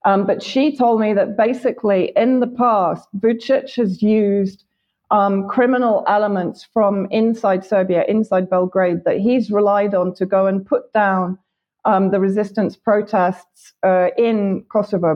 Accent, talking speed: British, 145 wpm